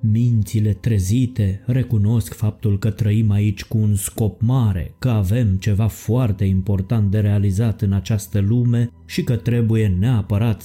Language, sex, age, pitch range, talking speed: Romanian, male, 20-39, 100-115 Hz, 140 wpm